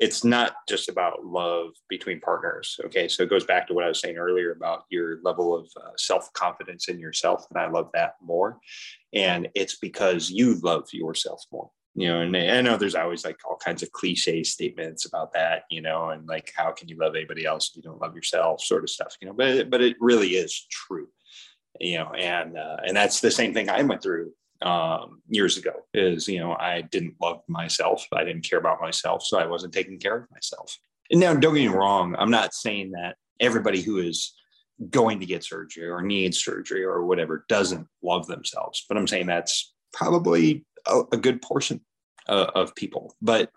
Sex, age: male, 30-49